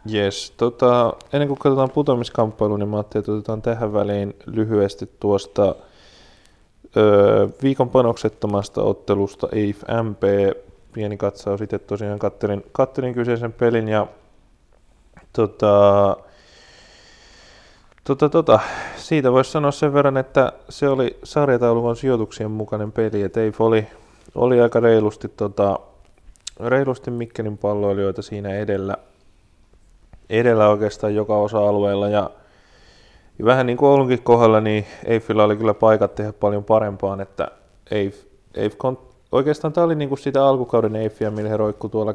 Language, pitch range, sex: Finnish, 105-120 Hz, male